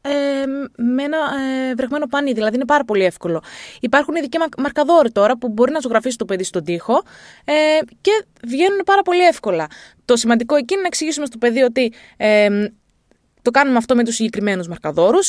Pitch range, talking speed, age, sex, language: 220-295 Hz, 180 wpm, 20-39, female, Greek